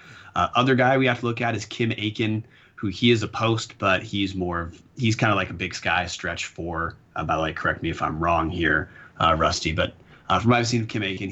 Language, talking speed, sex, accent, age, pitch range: English, 260 wpm, male, American, 30-49, 90-115 Hz